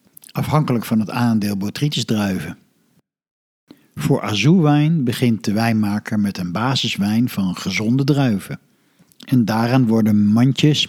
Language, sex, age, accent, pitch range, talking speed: Dutch, male, 60-79, Dutch, 110-145 Hz, 115 wpm